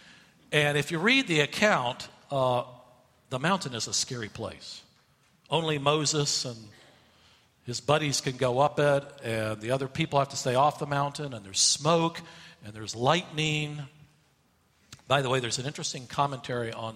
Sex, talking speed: male, 165 wpm